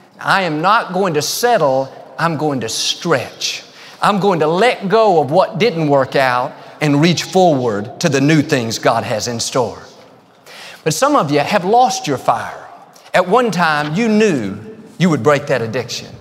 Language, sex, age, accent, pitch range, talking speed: English, male, 40-59, American, 145-185 Hz, 180 wpm